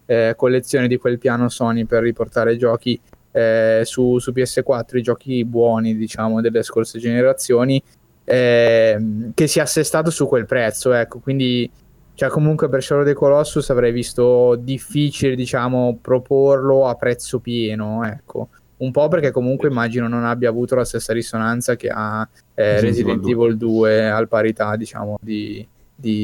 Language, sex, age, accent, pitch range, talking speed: Italian, male, 10-29, native, 115-130 Hz, 155 wpm